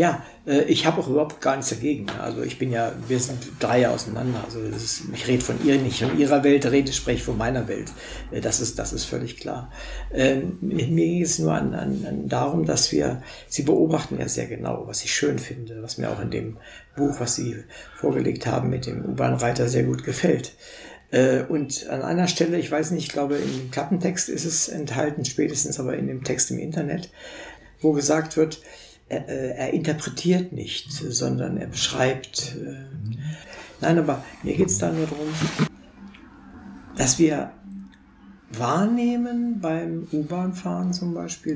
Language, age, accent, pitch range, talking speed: German, 60-79, German, 125-165 Hz, 165 wpm